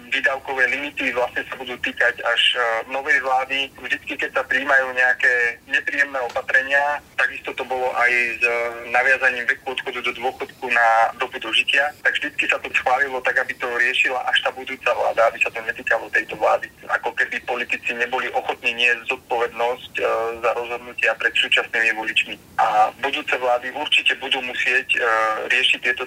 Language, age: Slovak, 30-49